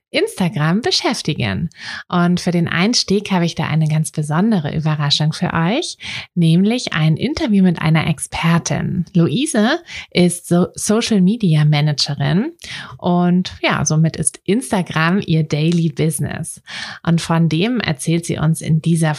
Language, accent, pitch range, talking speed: German, German, 160-190 Hz, 135 wpm